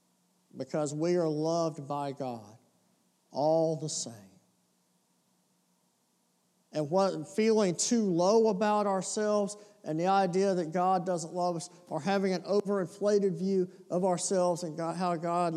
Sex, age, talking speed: male, 50-69, 125 wpm